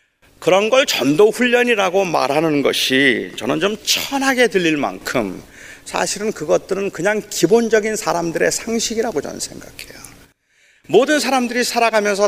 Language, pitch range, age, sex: Korean, 170-235 Hz, 40-59, male